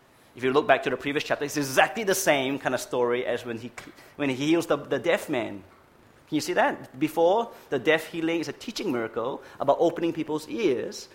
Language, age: English, 30-49